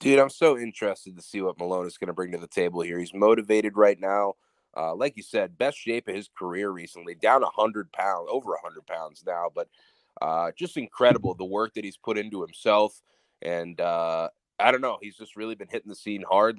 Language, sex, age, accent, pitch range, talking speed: English, male, 20-39, American, 100-120 Hz, 220 wpm